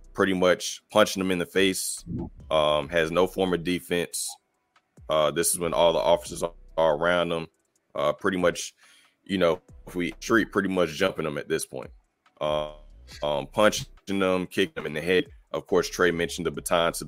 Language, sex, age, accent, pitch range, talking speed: English, male, 20-39, American, 70-85 Hz, 195 wpm